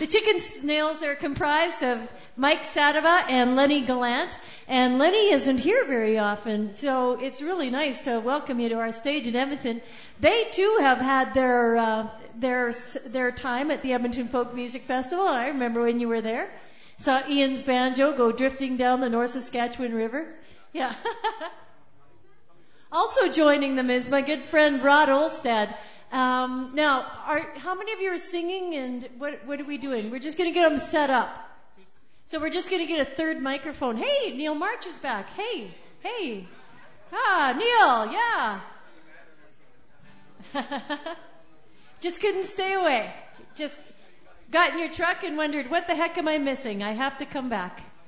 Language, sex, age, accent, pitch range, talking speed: English, female, 50-69, American, 250-320 Hz, 165 wpm